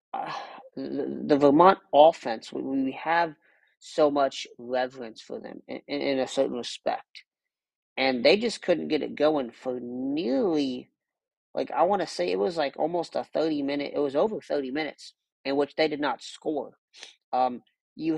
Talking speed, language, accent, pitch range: 170 wpm, English, American, 135-165 Hz